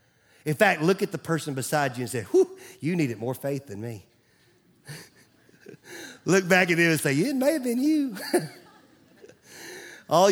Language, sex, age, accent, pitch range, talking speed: English, male, 40-59, American, 160-225 Hz, 170 wpm